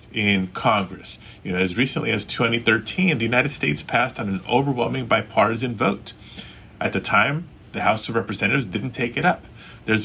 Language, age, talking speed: English, 30-49, 175 wpm